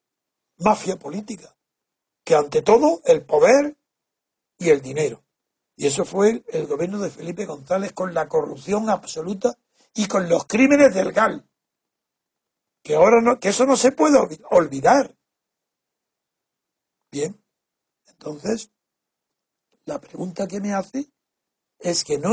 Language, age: Spanish, 60-79